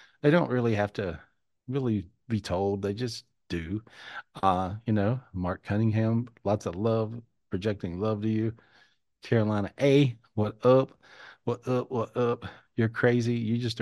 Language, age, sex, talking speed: English, 40-59, male, 150 wpm